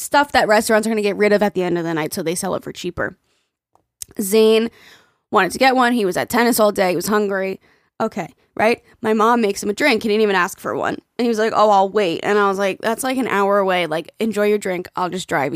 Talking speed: 275 wpm